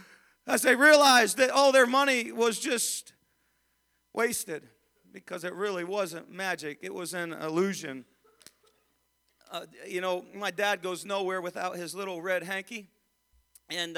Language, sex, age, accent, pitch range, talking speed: English, male, 40-59, American, 200-255 Hz, 135 wpm